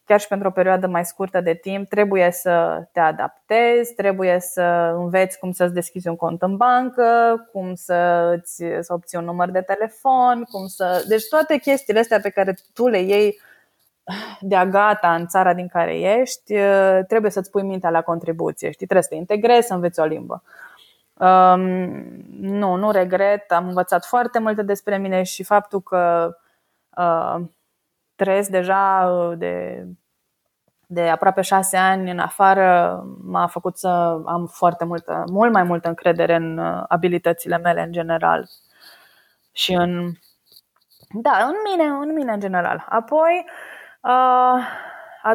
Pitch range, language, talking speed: 175-225 Hz, Romanian, 150 wpm